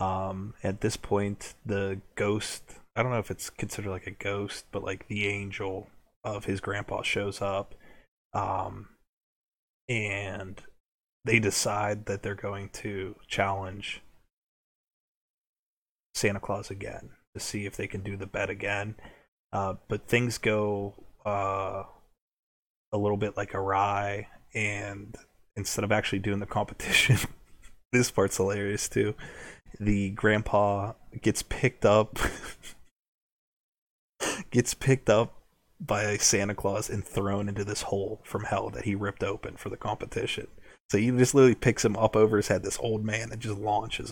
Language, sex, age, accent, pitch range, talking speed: English, male, 20-39, American, 100-110 Hz, 145 wpm